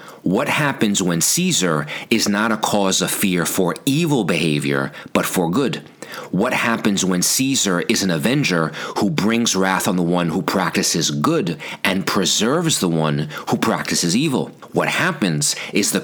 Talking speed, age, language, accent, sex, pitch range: 160 wpm, 40-59, English, American, male, 85-110 Hz